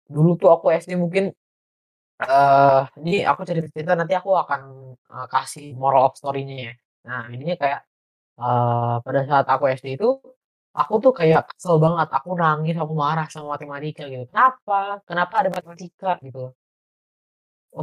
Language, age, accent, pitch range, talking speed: Indonesian, 20-39, native, 135-175 Hz, 150 wpm